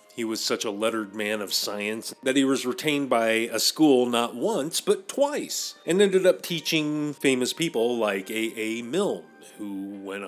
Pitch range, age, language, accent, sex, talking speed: 115-155 Hz, 30-49, English, American, male, 180 wpm